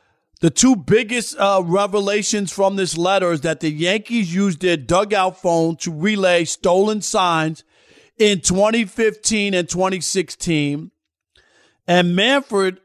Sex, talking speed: male, 120 wpm